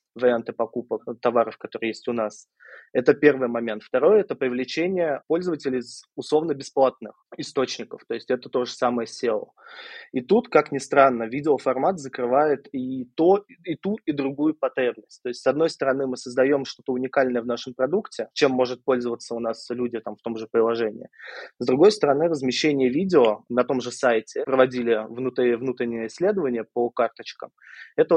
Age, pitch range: 20-39, 120-150 Hz